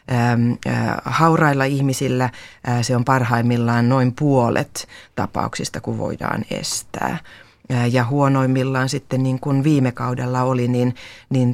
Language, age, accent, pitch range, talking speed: Finnish, 30-49, native, 115-130 Hz, 110 wpm